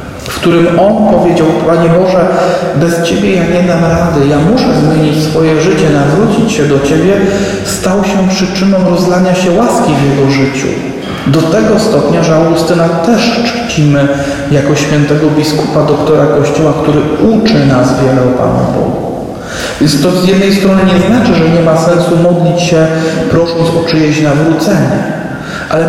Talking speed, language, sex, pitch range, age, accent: 155 wpm, Polish, male, 155-195 Hz, 40-59, native